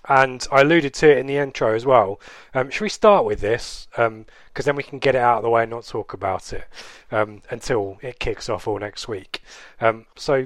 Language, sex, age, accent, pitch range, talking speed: English, male, 20-39, British, 115-145 Hz, 240 wpm